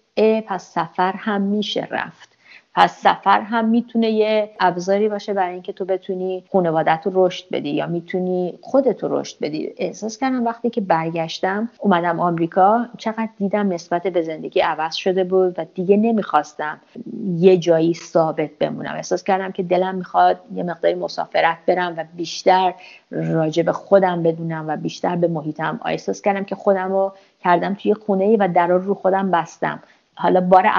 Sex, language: female, Persian